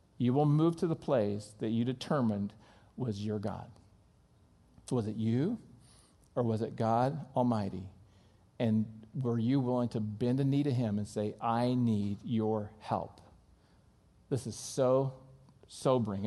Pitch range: 110-150 Hz